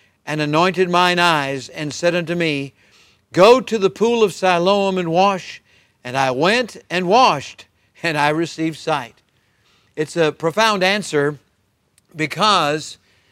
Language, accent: English, American